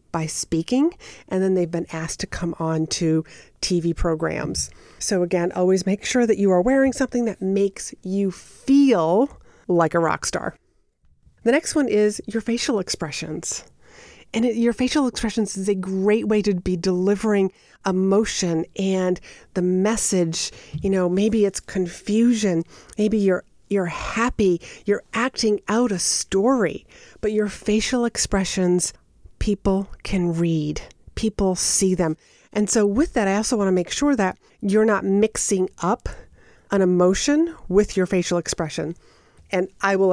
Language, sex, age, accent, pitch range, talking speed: English, female, 40-59, American, 175-215 Hz, 155 wpm